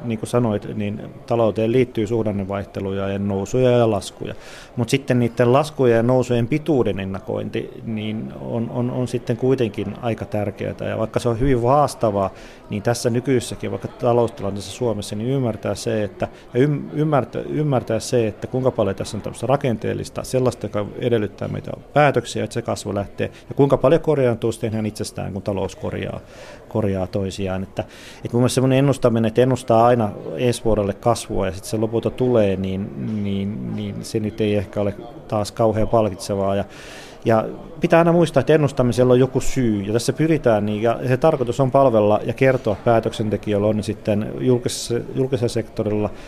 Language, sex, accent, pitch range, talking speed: Finnish, male, native, 105-125 Hz, 165 wpm